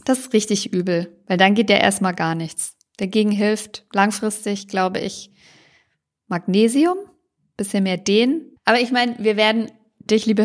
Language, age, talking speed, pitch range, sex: German, 50-69, 160 wpm, 190-235 Hz, female